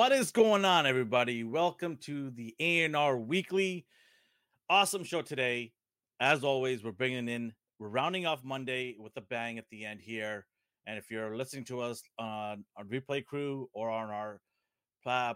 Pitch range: 115-140 Hz